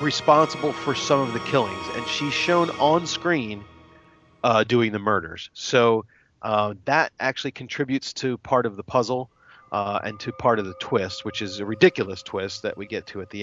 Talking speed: 190 wpm